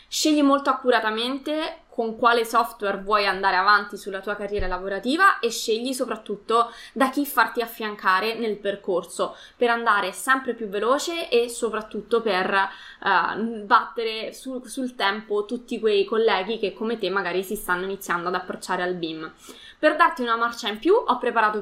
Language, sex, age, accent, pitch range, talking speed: Italian, female, 20-39, native, 205-260 Hz, 160 wpm